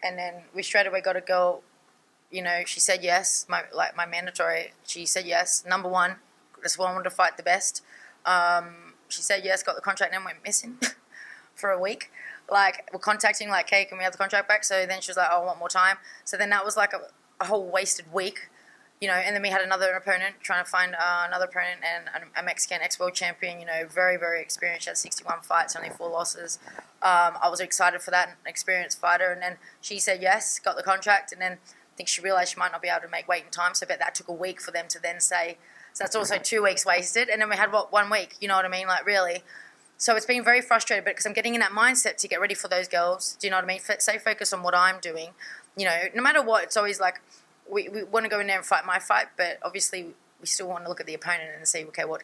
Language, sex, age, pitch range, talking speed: English, female, 20-39, 175-205 Hz, 270 wpm